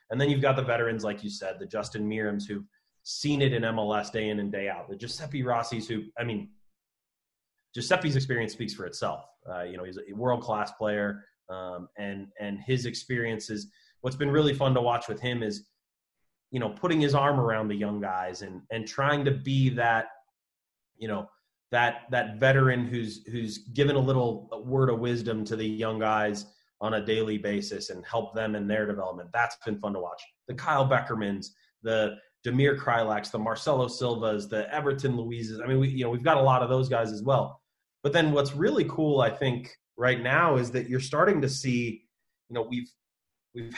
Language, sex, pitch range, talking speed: English, male, 105-135 Hz, 200 wpm